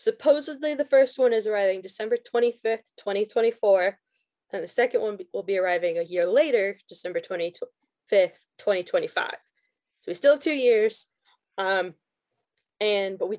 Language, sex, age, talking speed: English, female, 10-29, 145 wpm